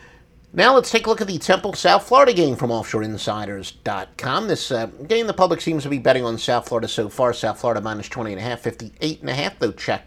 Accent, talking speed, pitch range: American, 205 wpm, 110-155 Hz